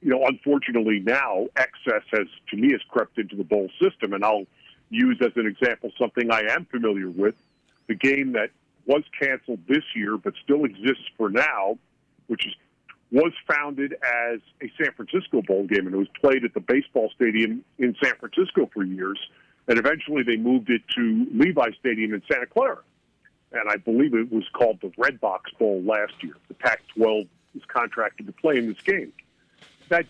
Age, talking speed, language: 50-69, 185 wpm, English